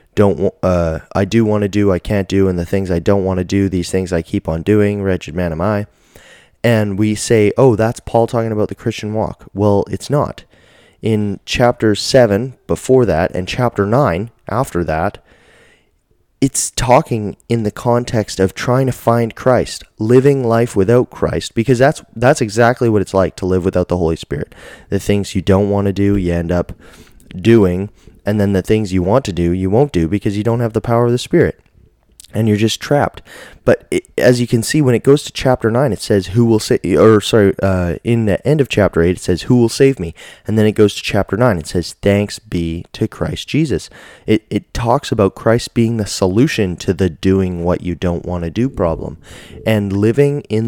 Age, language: 20-39, English